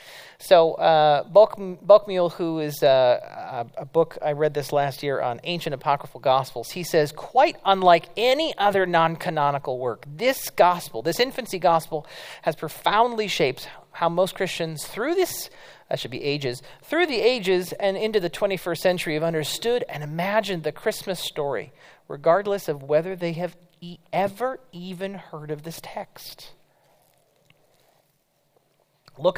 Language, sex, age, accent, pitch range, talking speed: English, male, 40-59, American, 150-195 Hz, 145 wpm